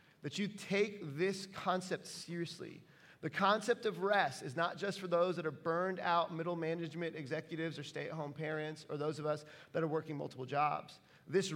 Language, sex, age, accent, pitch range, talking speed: English, male, 30-49, American, 145-180 Hz, 180 wpm